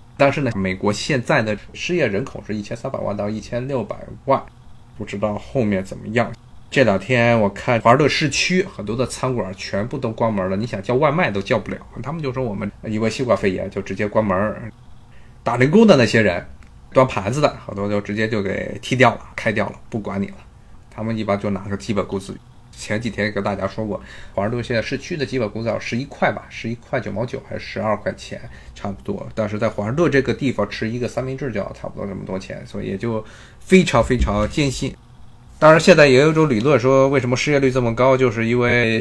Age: 20-39